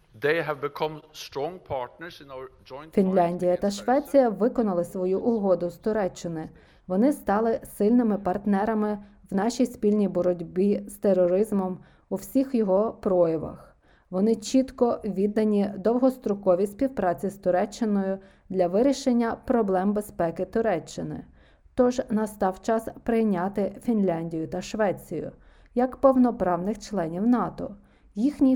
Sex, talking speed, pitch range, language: female, 95 wpm, 180-235 Hz, Ukrainian